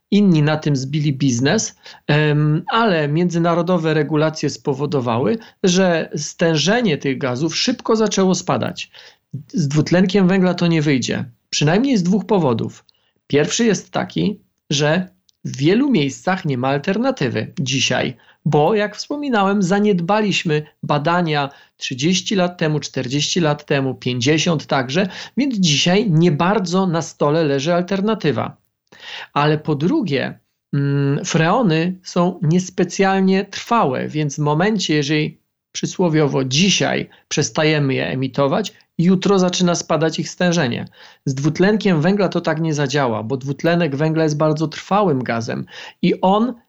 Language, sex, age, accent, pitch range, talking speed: Polish, male, 40-59, native, 150-195 Hz, 120 wpm